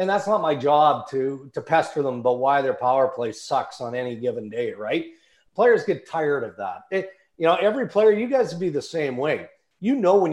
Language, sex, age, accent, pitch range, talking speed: English, male, 40-59, American, 125-175 Hz, 225 wpm